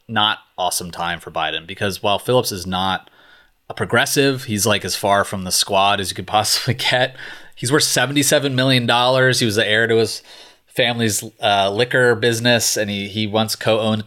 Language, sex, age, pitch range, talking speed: English, male, 30-49, 90-115 Hz, 190 wpm